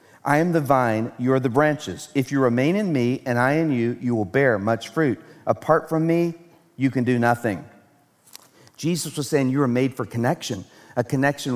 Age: 50-69